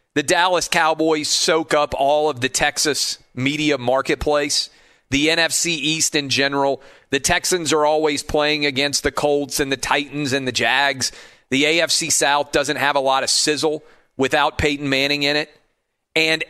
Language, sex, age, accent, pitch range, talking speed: English, male, 40-59, American, 135-165 Hz, 165 wpm